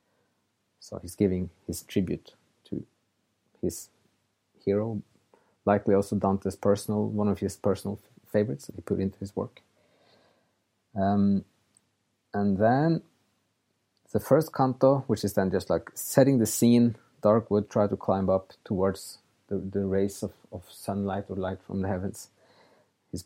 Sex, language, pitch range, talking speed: male, English, 95-115 Hz, 145 wpm